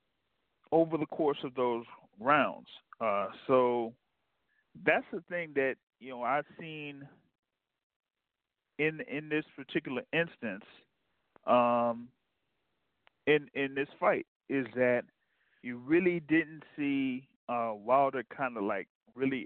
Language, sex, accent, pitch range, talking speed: English, male, American, 115-150 Hz, 115 wpm